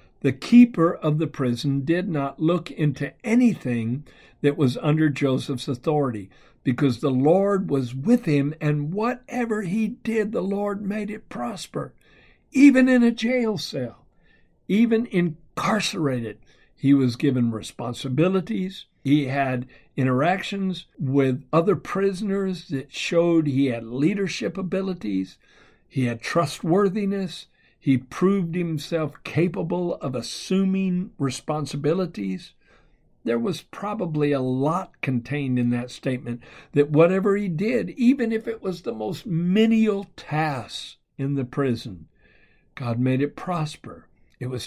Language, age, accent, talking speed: English, 60-79, American, 125 wpm